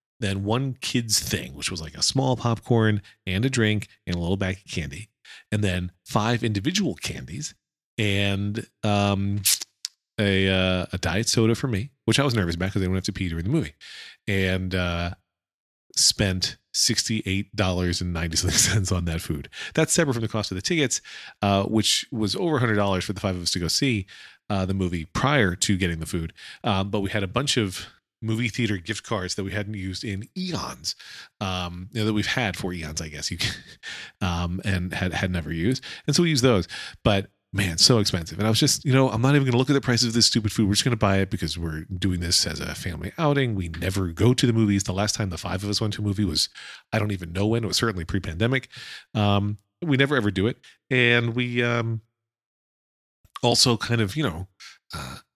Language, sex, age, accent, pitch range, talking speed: English, male, 40-59, American, 95-115 Hz, 225 wpm